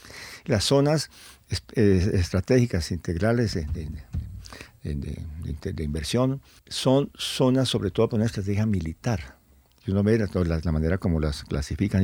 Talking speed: 145 wpm